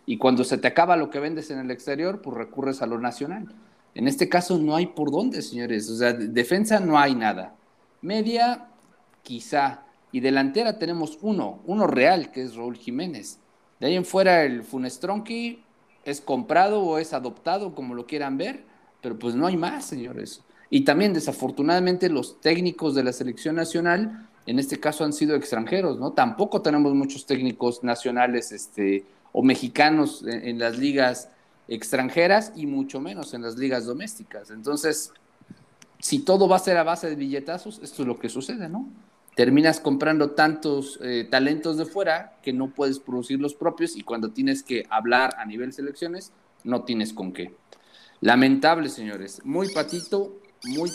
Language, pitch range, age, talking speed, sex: Spanish, 125-175 Hz, 40-59, 170 wpm, male